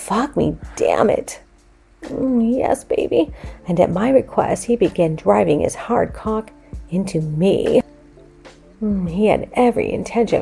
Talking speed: 140 wpm